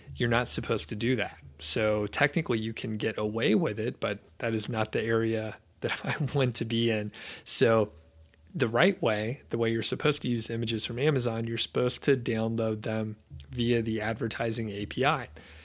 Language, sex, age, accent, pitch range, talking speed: English, male, 30-49, American, 110-125 Hz, 185 wpm